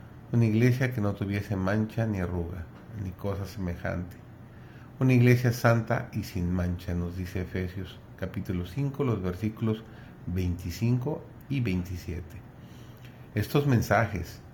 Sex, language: male, Spanish